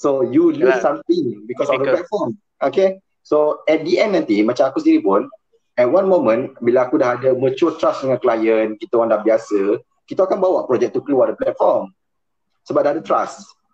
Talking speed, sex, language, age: 195 wpm, male, Malay, 30-49